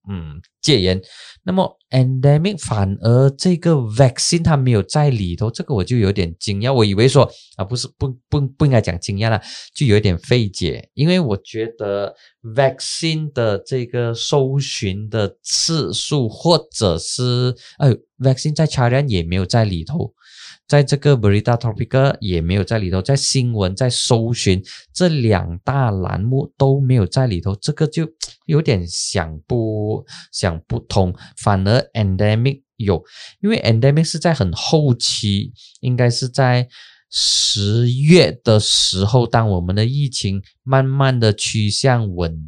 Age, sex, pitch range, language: 20-39, male, 100-135 Hz, Chinese